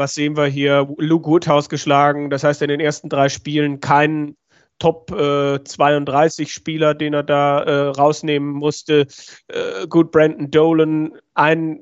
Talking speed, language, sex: 140 wpm, German, male